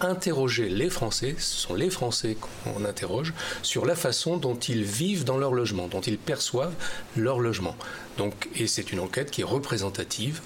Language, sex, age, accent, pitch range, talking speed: French, male, 40-59, French, 105-140 Hz, 180 wpm